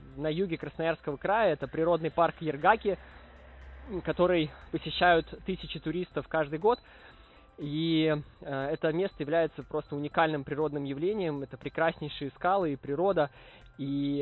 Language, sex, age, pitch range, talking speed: Russian, male, 20-39, 140-165 Hz, 120 wpm